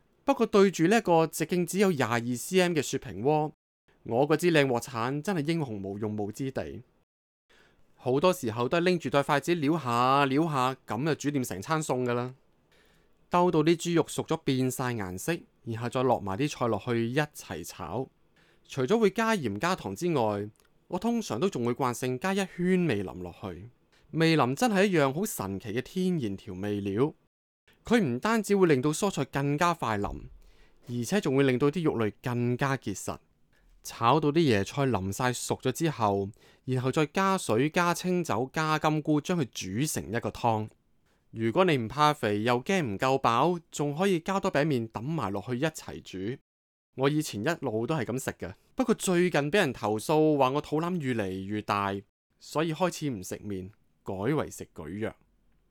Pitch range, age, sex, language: 115-165 Hz, 20-39, male, Chinese